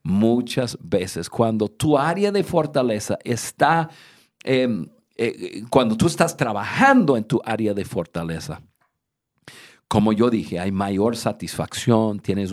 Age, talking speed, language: 50-69, 125 wpm, Spanish